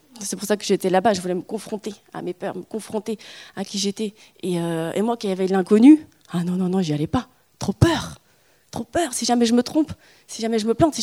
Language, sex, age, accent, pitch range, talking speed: French, female, 20-39, French, 185-230 Hz, 255 wpm